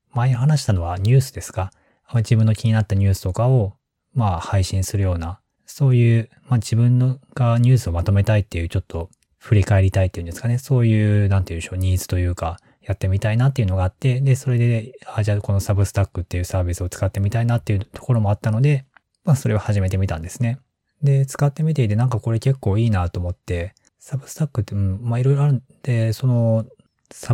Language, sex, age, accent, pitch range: Japanese, male, 20-39, native, 95-125 Hz